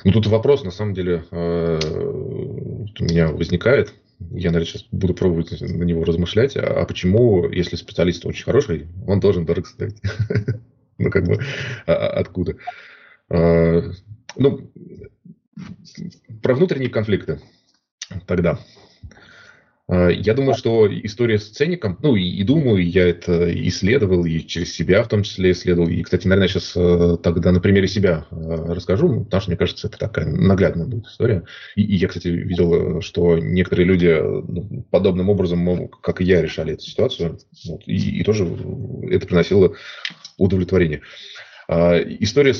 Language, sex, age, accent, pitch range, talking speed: Russian, male, 20-39, native, 85-105 Hz, 150 wpm